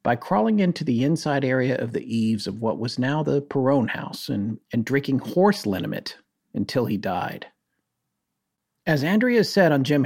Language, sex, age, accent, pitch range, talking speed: English, male, 40-59, American, 125-175 Hz, 175 wpm